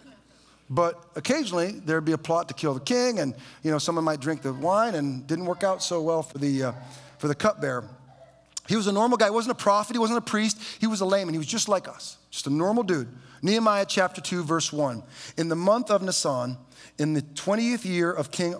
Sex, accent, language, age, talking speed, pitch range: male, American, English, 40-59, 235 wpm, 130-200 Hz